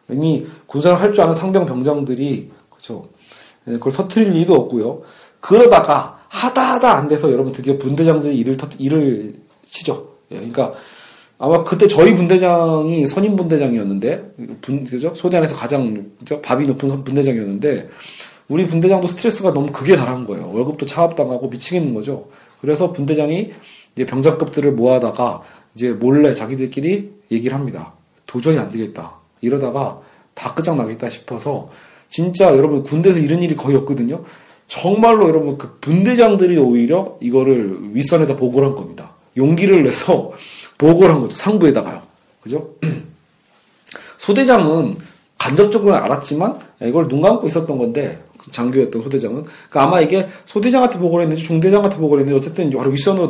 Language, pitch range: Korean, 135-180 Hz